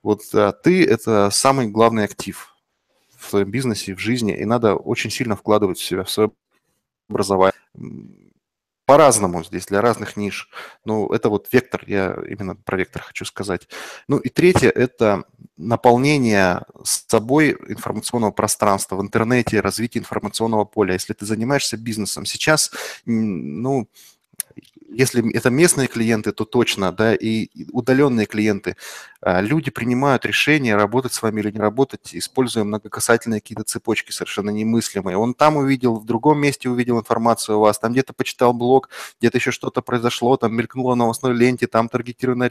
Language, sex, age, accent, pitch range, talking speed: Russian, male, 20-39, native, 105-125 Hz, 155 wpm